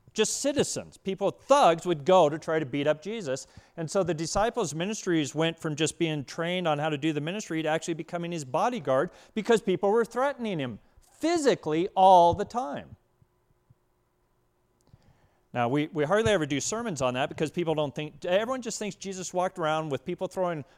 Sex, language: male, English